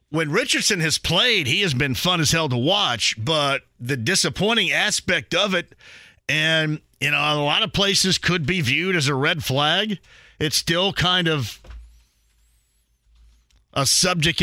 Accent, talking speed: American, 160 wpm